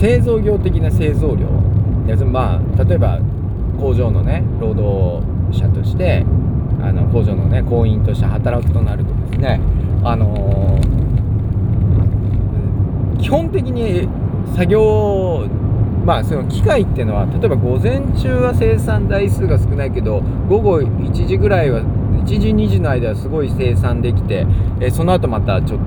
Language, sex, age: Japanese, male, 40-59